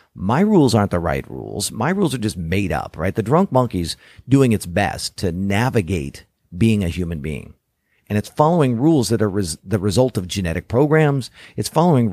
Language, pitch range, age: English, 95-130 Hz, 40-59